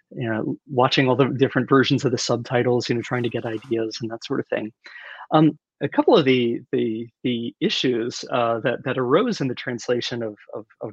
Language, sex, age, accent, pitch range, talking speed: English, male, 30-49, American, 115-145 Hz, 215 wpm